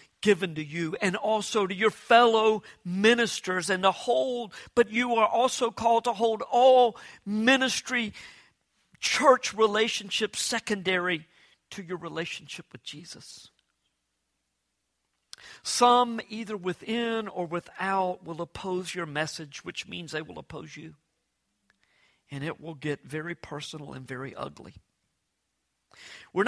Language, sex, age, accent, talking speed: English, male, 50-69, American, 120 wpm